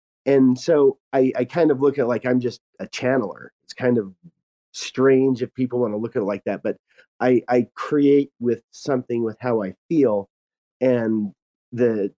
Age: 40-59